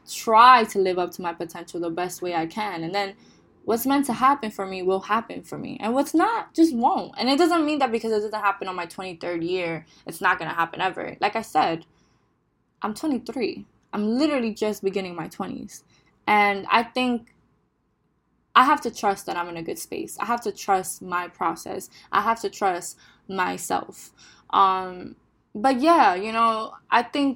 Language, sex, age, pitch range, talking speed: English, female, 10-29, 185-235 Hz, 195 wpm